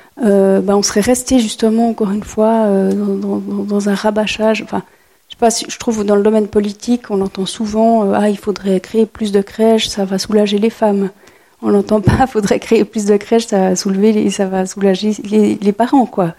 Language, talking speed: French, 225 wpm